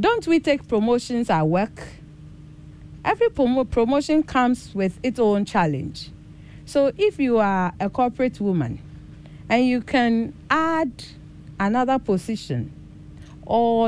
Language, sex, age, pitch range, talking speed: English, female, 50-69, 180-260 Hz, 115 wpm